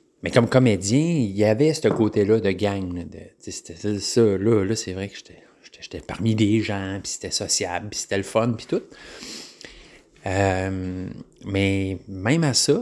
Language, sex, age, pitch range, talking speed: French, male, 30-49, 100-125 Hz, 185 wpm